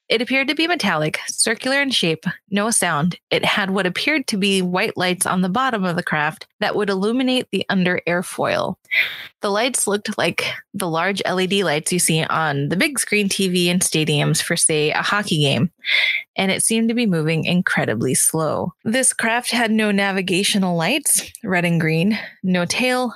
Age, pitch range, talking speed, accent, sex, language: 20-39, 170-225 Hz, 185 wpm, American, female, English